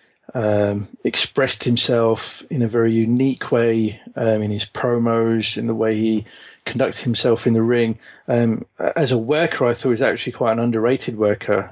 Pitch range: 110-120 Hz